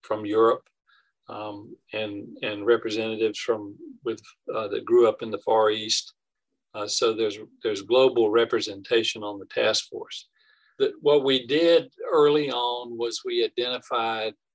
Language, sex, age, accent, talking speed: English, male, 50-69, American, 145 wpm